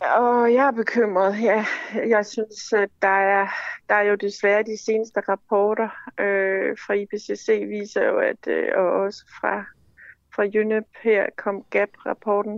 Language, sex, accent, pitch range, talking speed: Danish, female, native, 205-255 Hz, 155 wpm